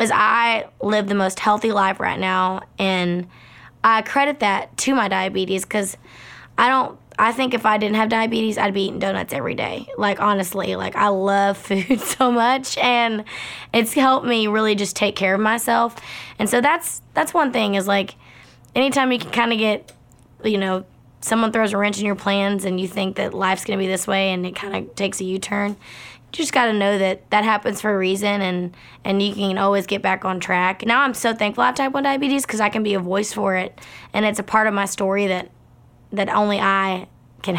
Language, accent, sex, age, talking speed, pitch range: English, American, female, 20-39, 220 wpm, 190-220 Hz